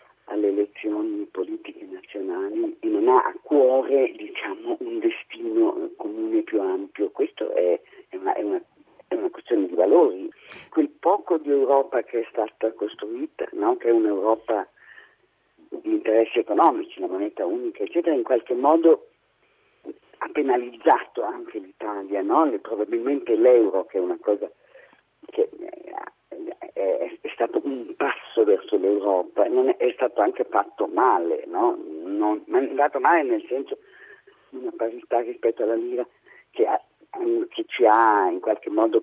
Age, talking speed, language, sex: 50-69, 150 wpm, Italian, male